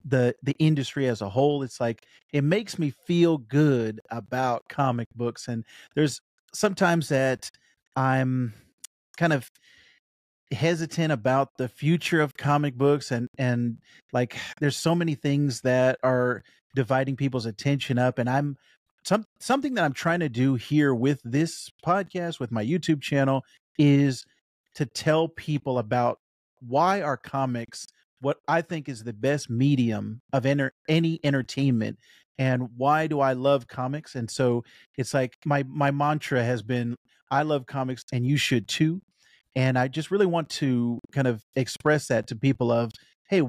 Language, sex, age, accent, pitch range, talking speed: English, male, 40-59, American, 125-150 Hz, 160 wpm